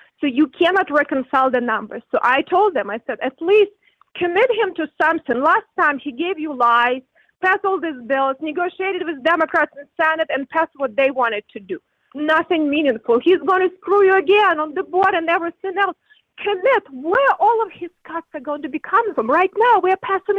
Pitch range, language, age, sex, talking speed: 290-410 Hz, English, 30-49, female, 210 wpm